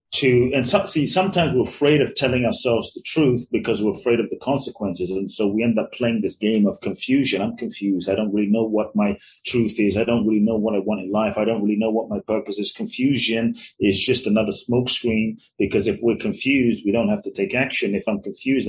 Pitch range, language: 100-130 Hz, English